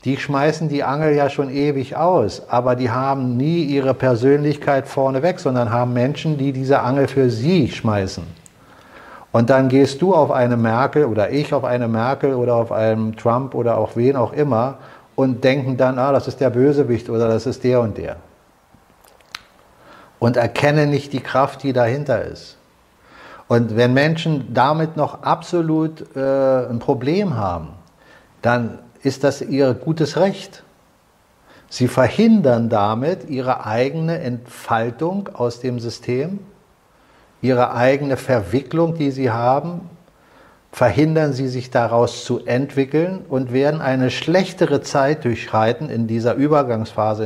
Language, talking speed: German, 145 wpm